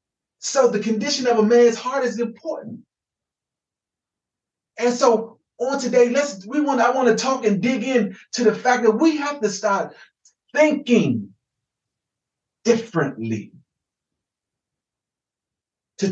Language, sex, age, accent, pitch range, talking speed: English, male, 40-59, American, 195-240 Hz, 125 wpm